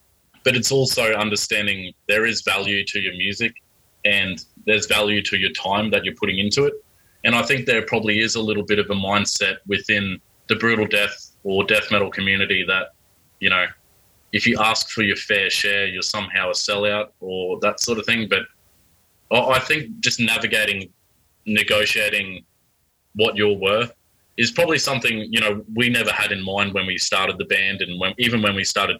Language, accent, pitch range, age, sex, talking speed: English, Australian, 95-115 Hz, 20-39, male, 185 wpm